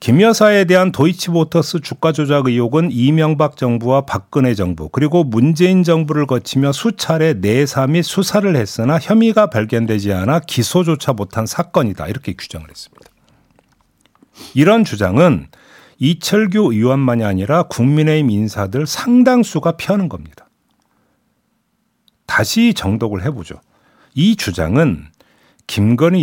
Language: Korean